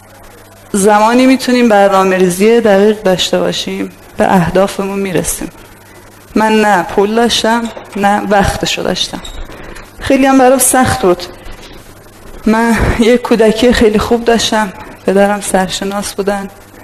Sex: female